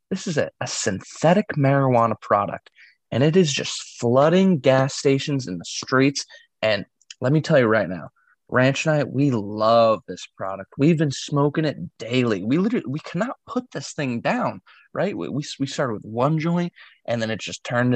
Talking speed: 190 wpm